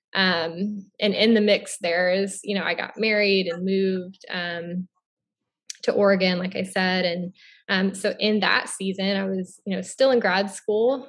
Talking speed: 185 wpm